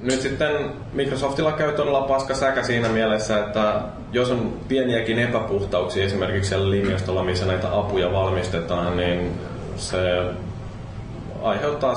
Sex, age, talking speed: male, 20-39, 115 wpm